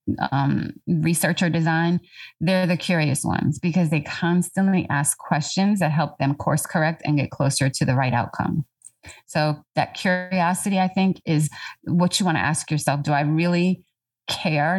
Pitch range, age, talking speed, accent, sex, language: 145-175 Hz, 30-49, 160 wpm, American, female, English